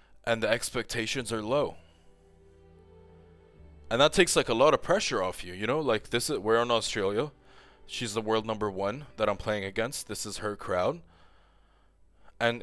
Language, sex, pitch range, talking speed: English, male, 85-135 Hz, 175 wpm